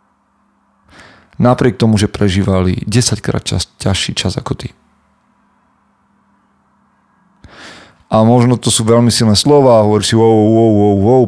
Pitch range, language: 95-115 Hz, Slovak